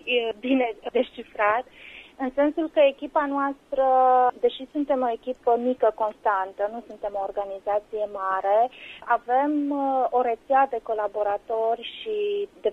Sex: female